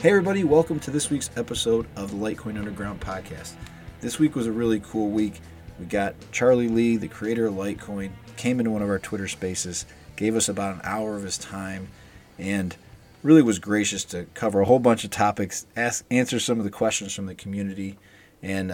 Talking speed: 200 wpm